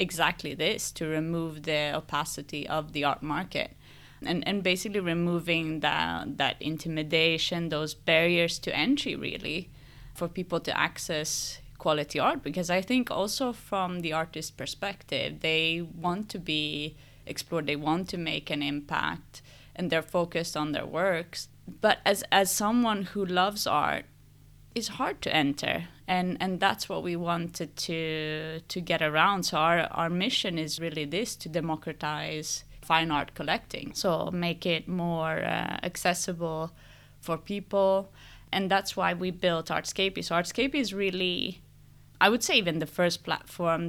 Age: 20-39